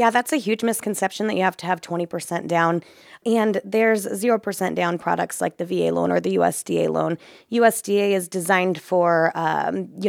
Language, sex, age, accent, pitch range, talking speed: English, female, 20-39, American, 165-205 Hz, 185 wpm